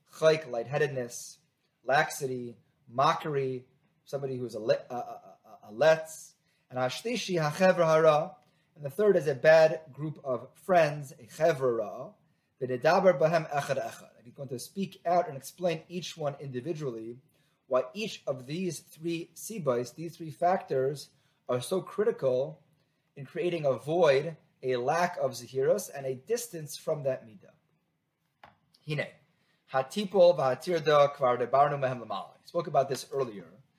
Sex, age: male, 30-49